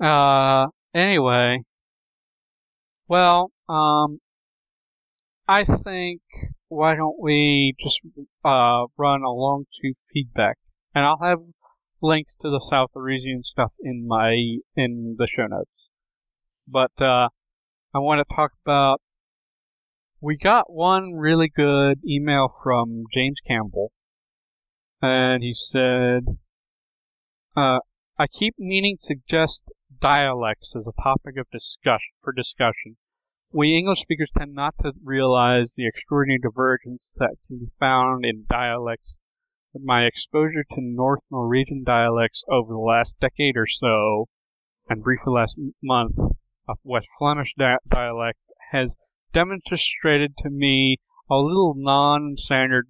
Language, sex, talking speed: English, male, 125 wpm